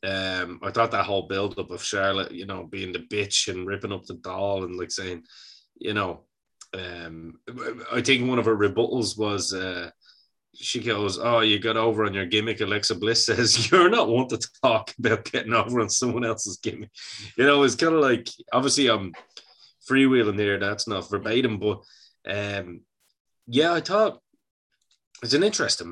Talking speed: 180 wpm